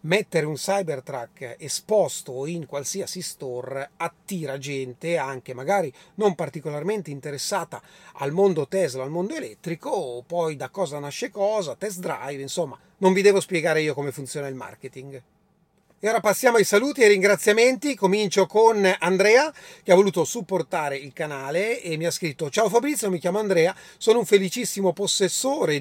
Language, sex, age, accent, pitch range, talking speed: Italian, male, 30-49, native, 165-210 Hz, 160 wpm